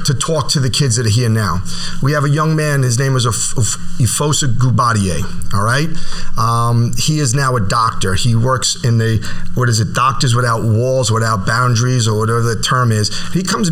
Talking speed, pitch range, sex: 215 wpm, 120-155 Hz, male